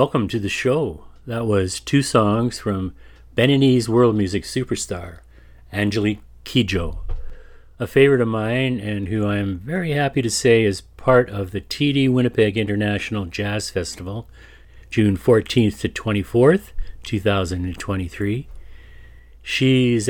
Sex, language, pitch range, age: male, English, 95-115 Hz, 40-59